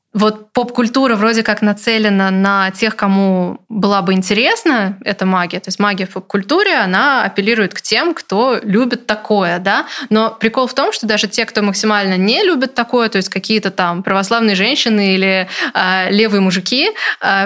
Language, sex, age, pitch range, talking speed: Russian, female, 20-39, 200-235 Hz, 170 wpm